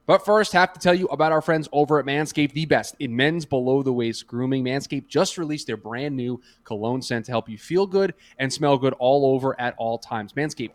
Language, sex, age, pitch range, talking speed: English, male, 20-39, 120-155 Hz, 220 wpm